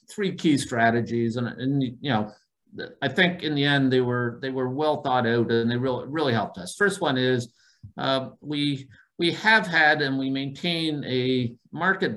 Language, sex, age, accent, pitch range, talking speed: English, male, 50-69, American, 115-140 Hz, 185 wpm